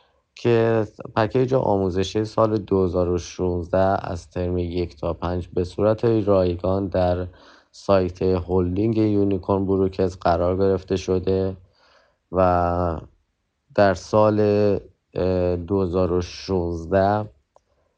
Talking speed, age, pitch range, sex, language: 85 wpm, 30-49, 90-100 Hz, male, Persian